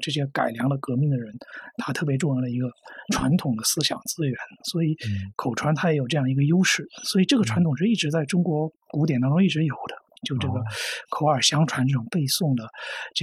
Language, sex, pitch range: Chinese, male, 135-185 Hz